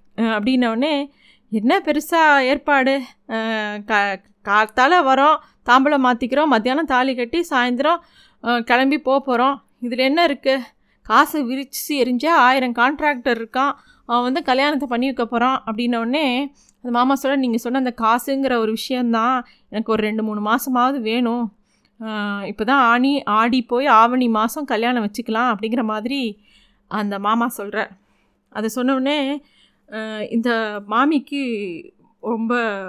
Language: Tamil